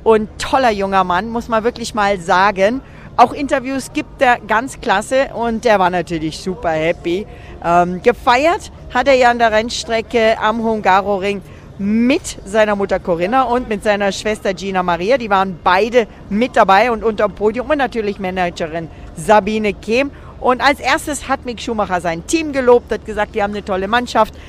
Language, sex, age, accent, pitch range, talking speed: German, female, 40-59, German, 195-255 Hz, 175 wpm